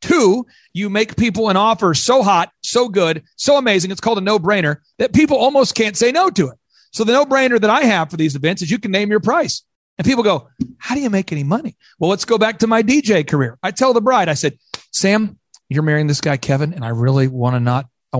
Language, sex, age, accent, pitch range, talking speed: English, male, 40-59, American, 160-230 Hz, 245 wpm